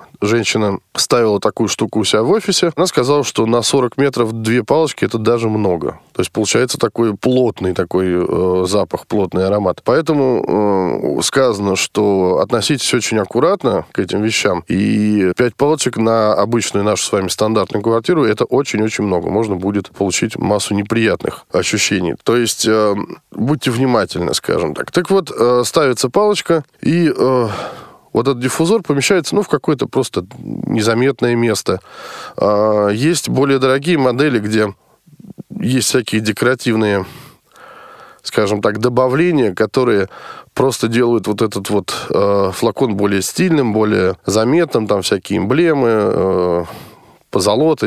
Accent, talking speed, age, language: native, 140 wpm, 20-39, Russian